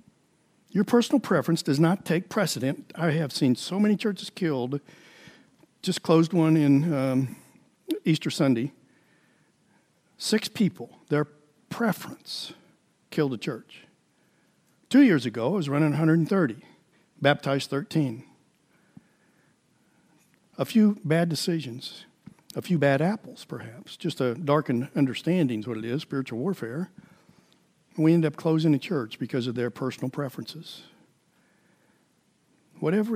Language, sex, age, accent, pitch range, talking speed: English, male, 60-79, American, 140-185 Hz, 125 wpm